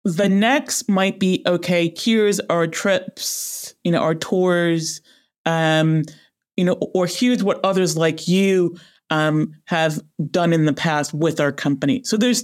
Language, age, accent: English, 30-49, American